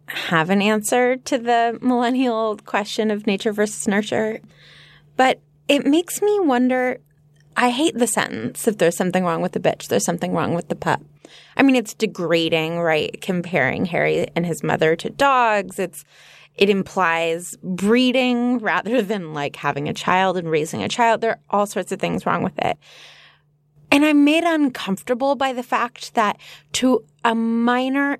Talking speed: 170 wpm